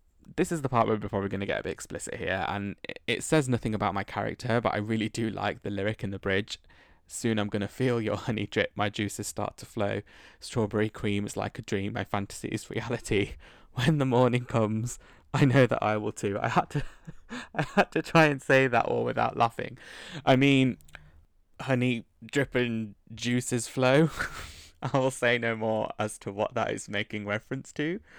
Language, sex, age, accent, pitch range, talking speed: English, male, 20-39, British, 100-120 Hz, 200 wpm